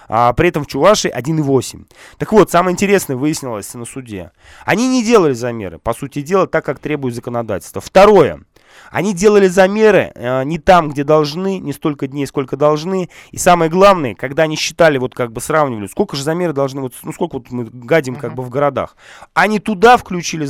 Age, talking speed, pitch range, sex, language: 20-39, 185 wpm, 130-180 Hz, male, Russian